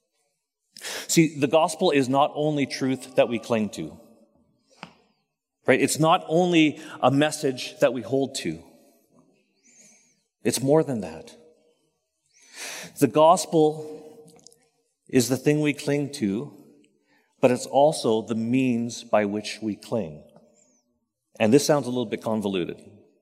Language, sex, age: English, male, 40-59